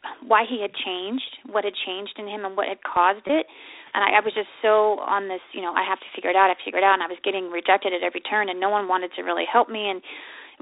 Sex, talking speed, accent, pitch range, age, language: female, 305 wpm, American, 190-235 Hz, 30-49, English